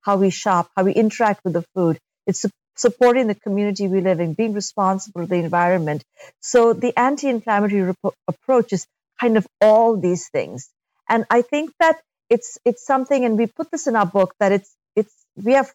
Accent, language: Indian, English